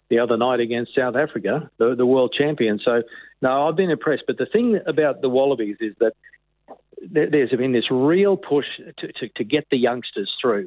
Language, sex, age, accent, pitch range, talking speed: English, male, 50-69, Australian, 110-130 Hz, 195 wpm